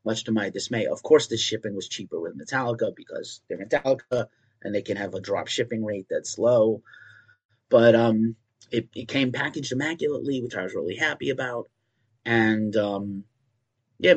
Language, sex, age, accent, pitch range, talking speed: English, male, 30-49, American, 105-125 Hz, 175 wpm